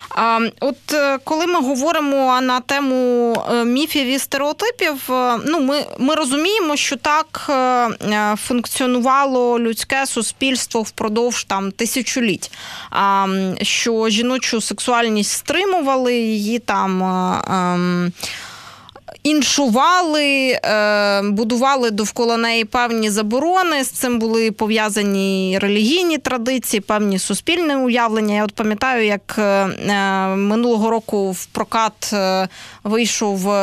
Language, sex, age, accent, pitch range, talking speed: Ukrainian, female, 20-39, native, 205-260 Hz, 90 wpm